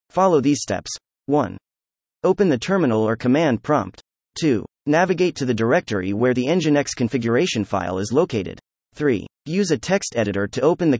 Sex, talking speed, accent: male, 165 wpm, American